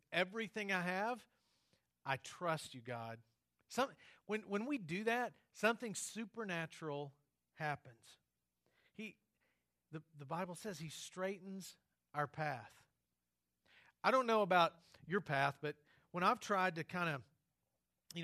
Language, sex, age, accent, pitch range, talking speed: English, male, 40-59, American, 140-190 Hz, 130 wpm